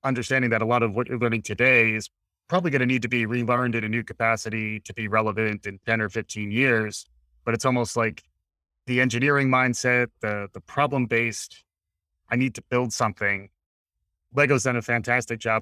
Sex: male